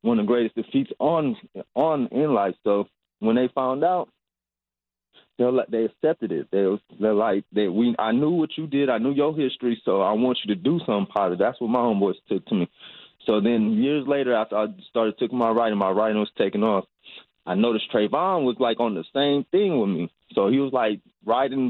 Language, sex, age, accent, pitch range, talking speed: English, male, 20-39, American, 110-150 Hz, 220 wpm